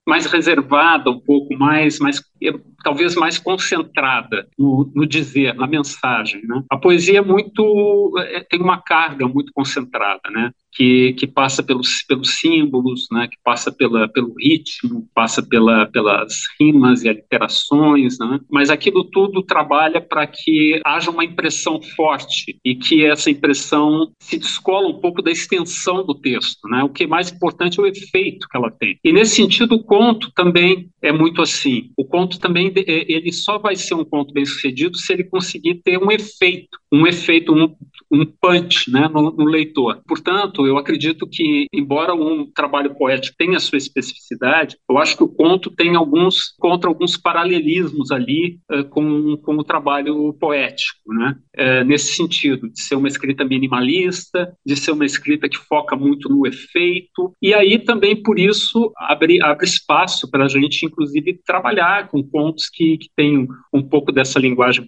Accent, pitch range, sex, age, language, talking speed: Brazilian, 140-195 Hz, male, 50-69, Portuguese, 170 wpm